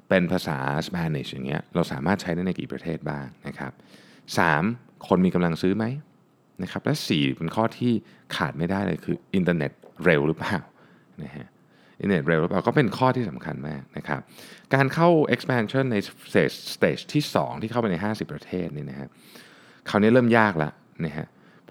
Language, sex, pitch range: Thai, male, 80-120 Hz